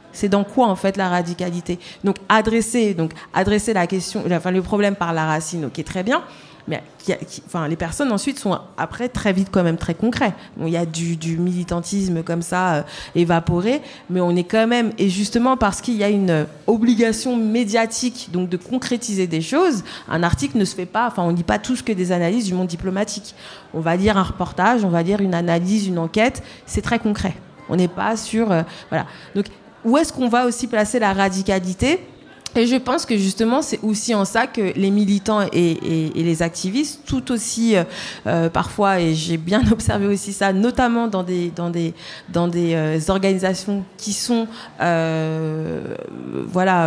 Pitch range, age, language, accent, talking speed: 175-225 Hz, 40-59, French, French, 200 wpm